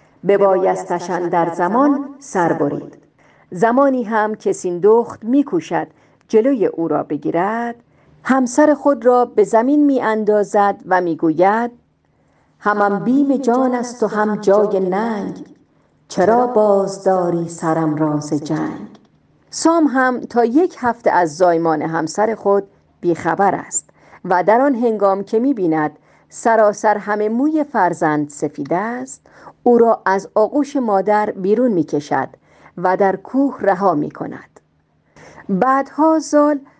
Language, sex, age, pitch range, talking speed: Persian, female, 50-69, 175-235 Hz, 120 wpm